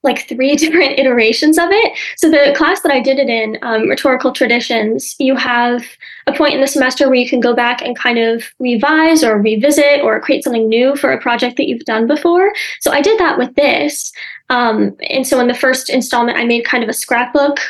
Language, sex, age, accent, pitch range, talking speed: English, female, 20-39, American, 240-300 Hz, 220 wpm